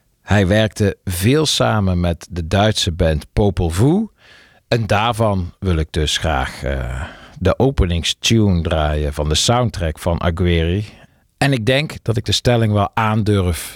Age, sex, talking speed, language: 50-69, male, 145 wpm, Dutch